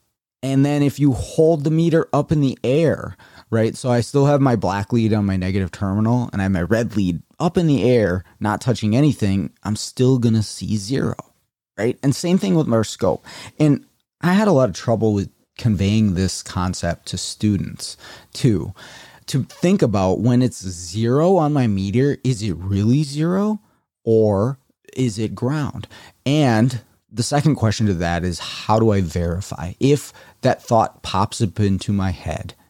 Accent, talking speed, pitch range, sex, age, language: American, 180 wpm, 95-130 Hz, male, 30-49, English